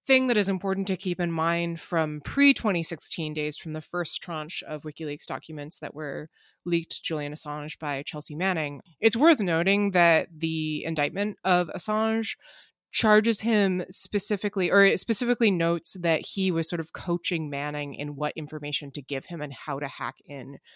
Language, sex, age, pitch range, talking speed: English, female, 20-39, 150-190 Hz, 170 wpm